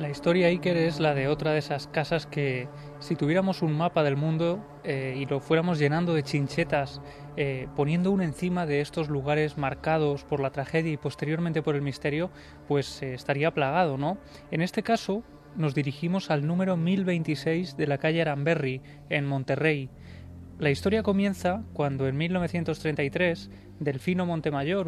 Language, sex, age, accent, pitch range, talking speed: Spanish, male, 20-39, Spanish, 140-170 Hz, 160 wpm